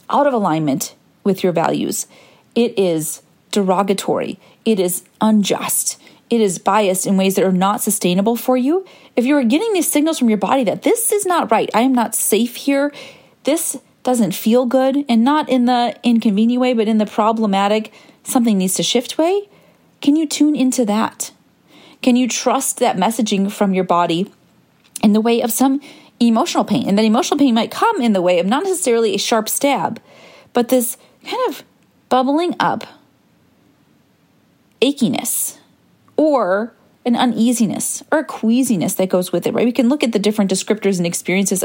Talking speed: 175 wpm